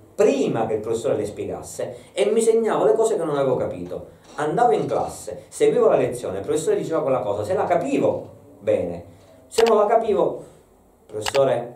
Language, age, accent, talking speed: Italian, 40-59, native, 180 wpm